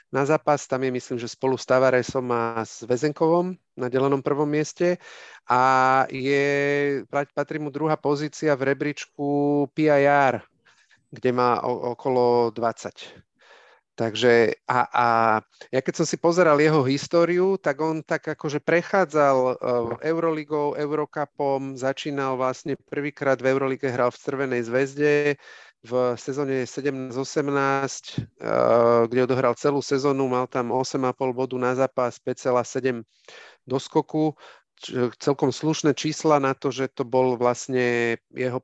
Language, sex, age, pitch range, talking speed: Slovak, male, 40-59, 125-145 Hz, 125 wpm